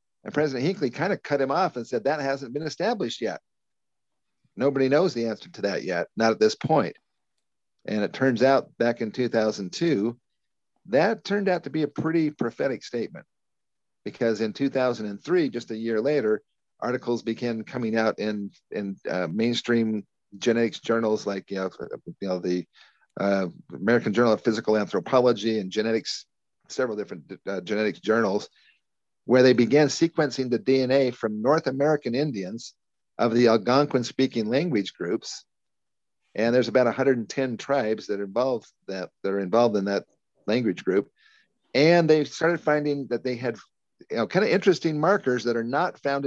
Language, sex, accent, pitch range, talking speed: English, male, American, 110-135 Hz, 160 wpm